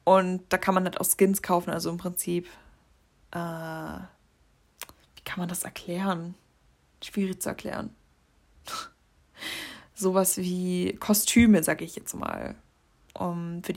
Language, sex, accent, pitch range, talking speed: German, female, German, 180-220 Hz, 125 wpm